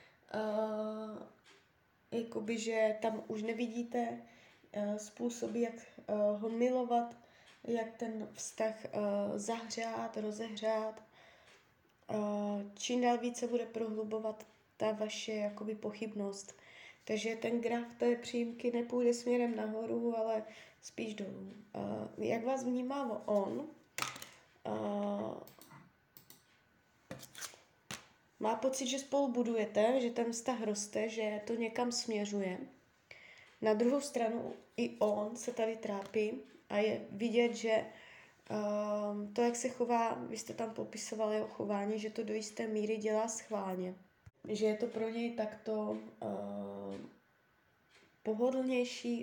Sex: female